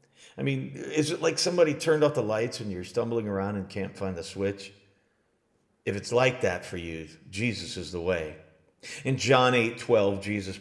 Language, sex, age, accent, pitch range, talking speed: English, male, 40-59, American, 105-160 Hz, 190 wpm